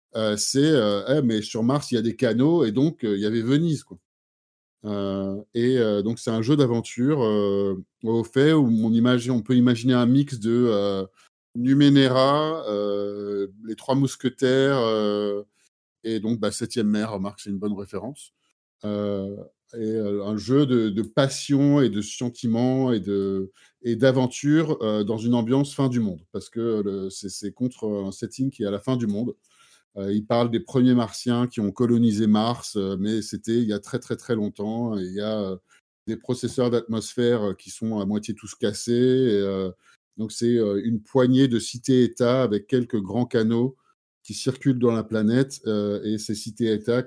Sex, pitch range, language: male, 105-125 Hz, French